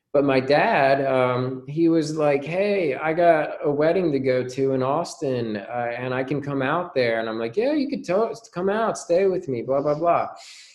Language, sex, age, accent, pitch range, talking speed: English, male, 20-39, American, 105-140 Hz, 210 wpm